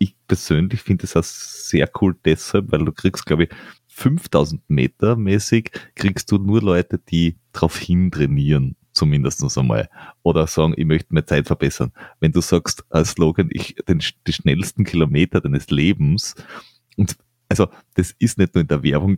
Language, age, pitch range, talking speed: German, 30-49, 80-115 Hz, 170 wpm